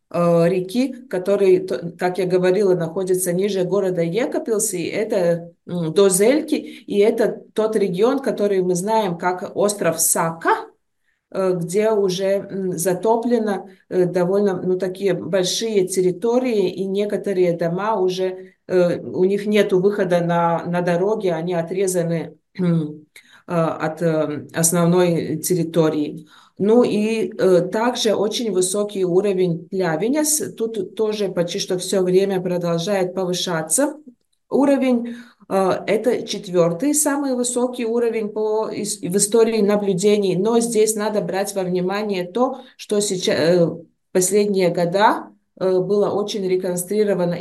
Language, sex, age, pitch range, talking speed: Russian, female, 20-39, 180-215 Hz, 110 wpm